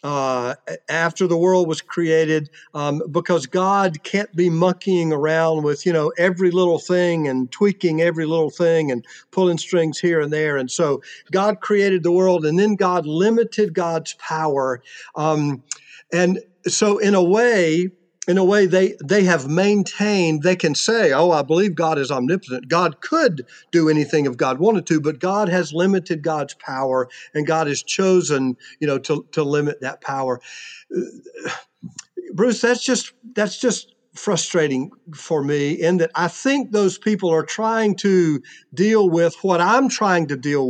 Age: 50-69